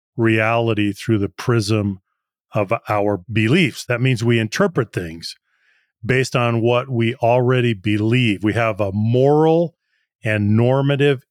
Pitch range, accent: 115-145 Hz, American